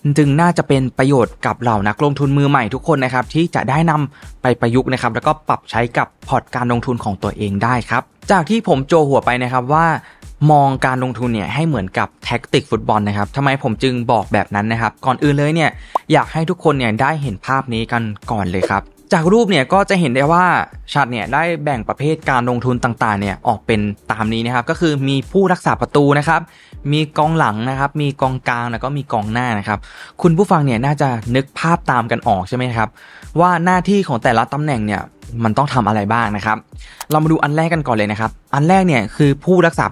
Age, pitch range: 20-39, 115-150 Hz